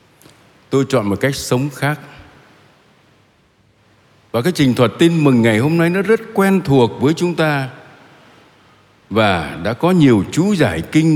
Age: 60-79